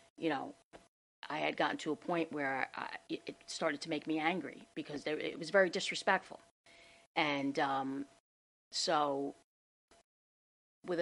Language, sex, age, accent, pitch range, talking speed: English, female, 30-49, American, 150-170 Hz, 130 wpm